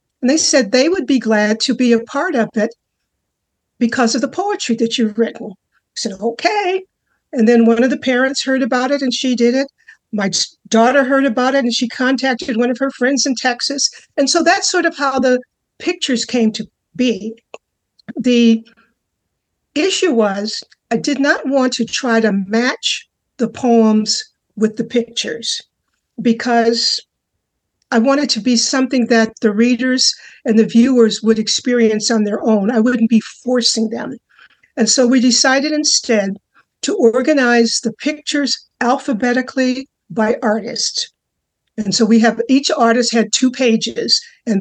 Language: English